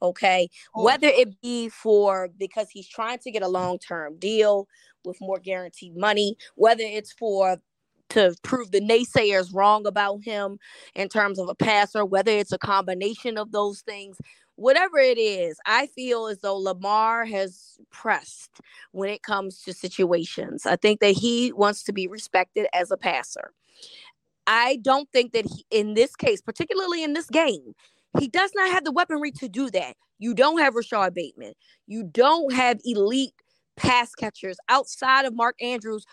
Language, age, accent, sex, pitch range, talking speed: English, 20-39, American, female, 195-275 Hz, 170 wpm